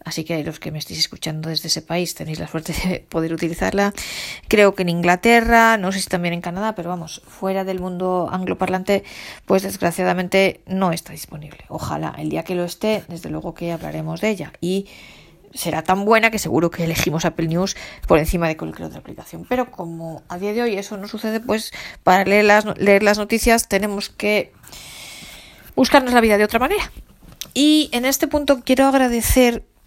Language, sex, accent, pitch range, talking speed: Spanish, female, Spanish, 180-225 Hz, 190 wpm